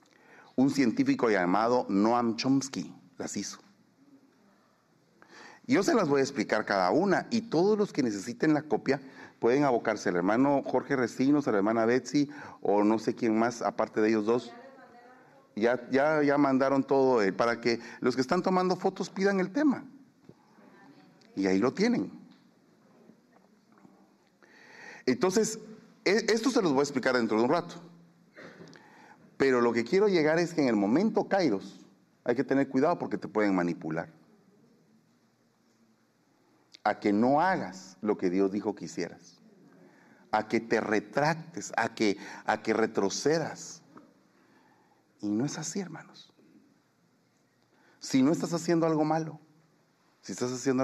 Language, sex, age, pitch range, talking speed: Spanish, male, 40-59, 115-195 Hz, 145 wpm